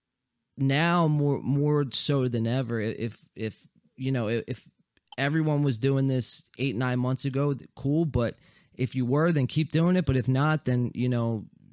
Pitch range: 115-140 Hz